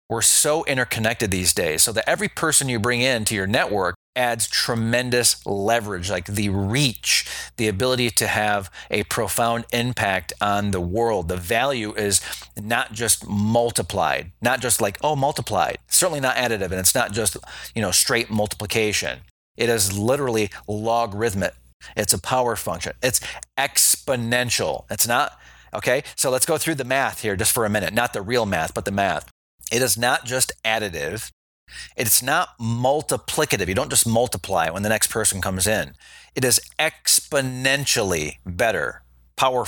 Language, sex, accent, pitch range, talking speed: English, male, American, 100-125 Hz, 160 wpm